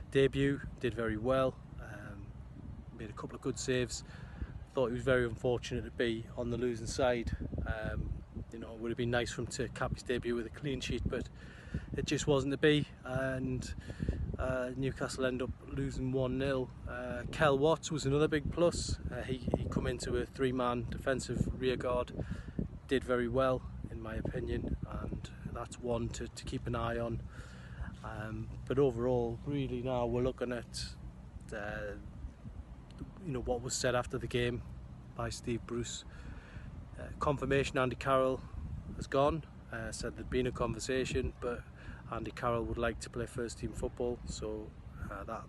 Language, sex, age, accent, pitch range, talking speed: English, male, 30-49, British, 110-130 Hz, 170 wpm